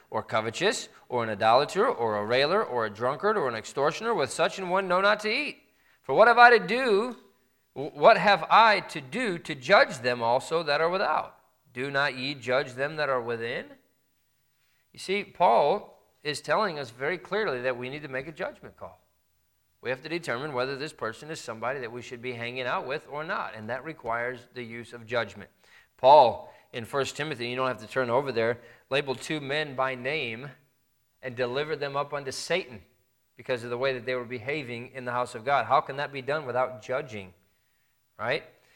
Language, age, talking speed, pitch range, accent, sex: English, 40-59, 205 wpm, 115-155 Hz, American, male